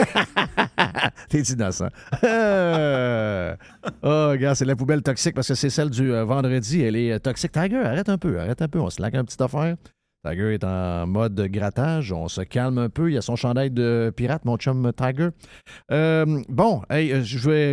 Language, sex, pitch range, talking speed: French, male, 105-140 Hz, 195 wpm